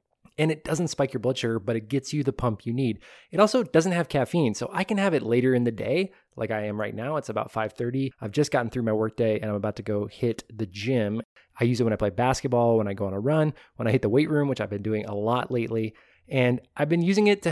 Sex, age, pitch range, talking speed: male, 20-39, 115-145 Hz, 290 wpm